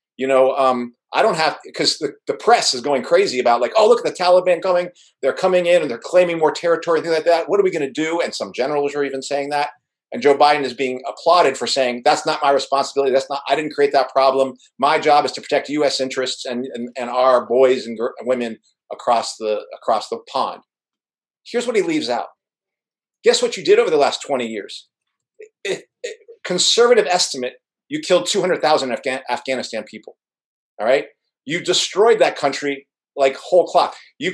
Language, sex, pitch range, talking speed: English, male, 135-205 Hz, 205 wpm